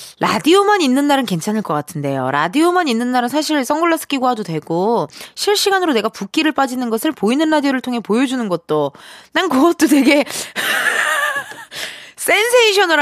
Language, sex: Korean, female